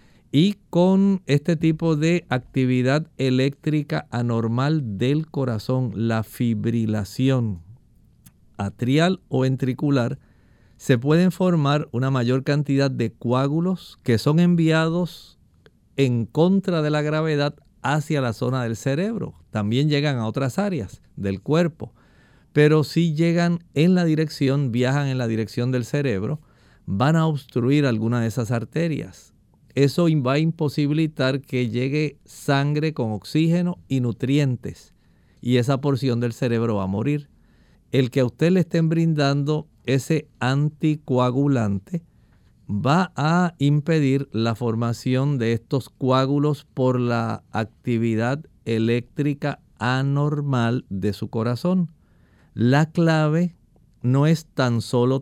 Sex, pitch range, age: male, 120-155 Hz, 50-69